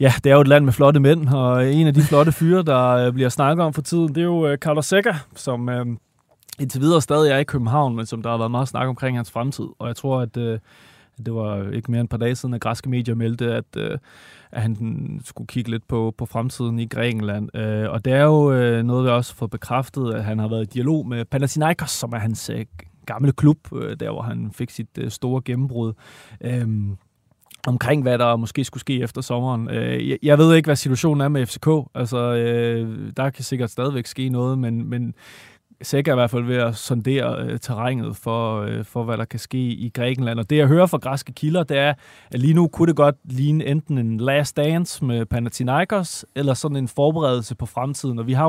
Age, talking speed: 20-39, 225 wpm